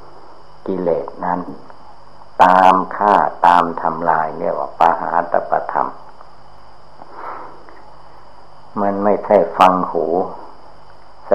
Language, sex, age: Thai, male, 60-79